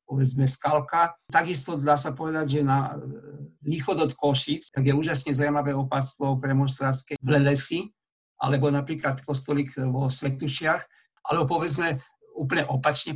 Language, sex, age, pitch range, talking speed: Slovak, male, 50-69, 140-155 Hz, 130 wpm